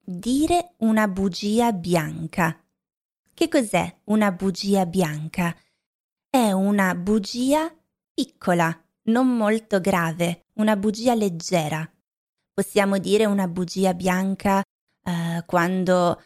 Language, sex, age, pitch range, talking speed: Italian, female, 20-39, 180-205 Hz, 90 wpm